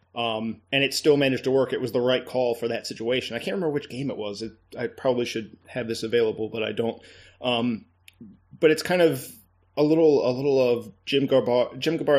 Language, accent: English, American